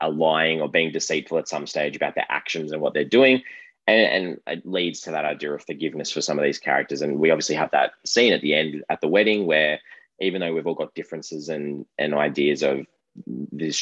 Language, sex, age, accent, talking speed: English, male, 20-39, Australian, 230 wpm